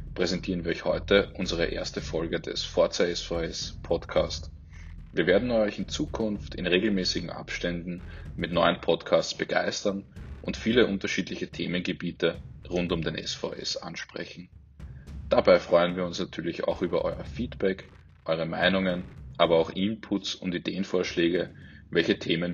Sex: male